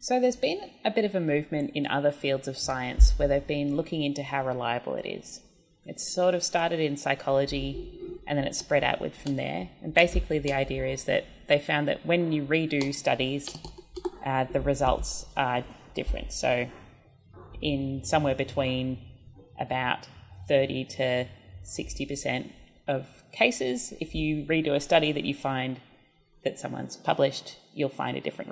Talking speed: 165 wpm